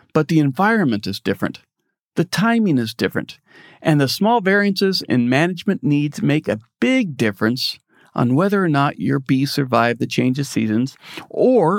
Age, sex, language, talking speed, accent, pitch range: 40-59, male, English, 165 wpm, American, 125-185 Hz